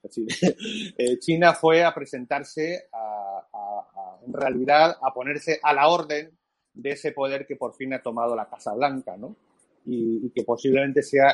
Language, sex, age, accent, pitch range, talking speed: Spanish, male, 40-59, Spanish, 130-155 Hz, 175 wpm